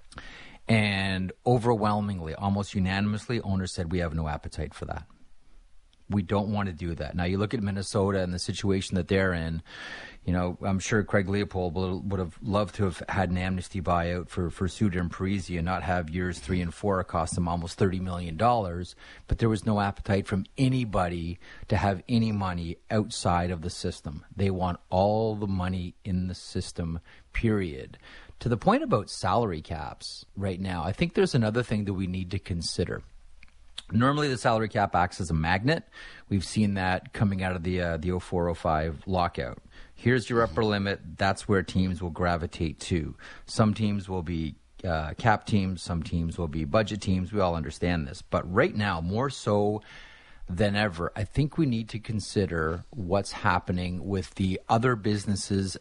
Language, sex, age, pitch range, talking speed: English, male, 30-49, 85-105 Hz, 180 wpm